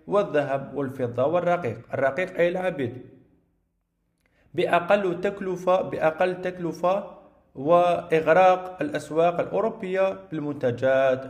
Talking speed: 75 wpm